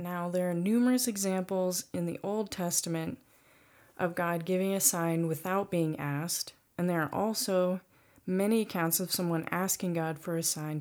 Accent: American